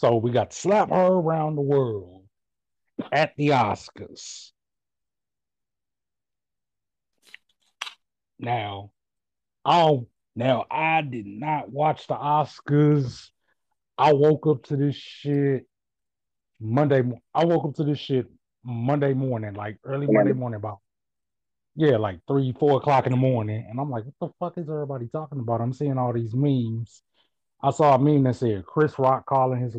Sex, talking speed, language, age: male, 150 wpm, English, 30-49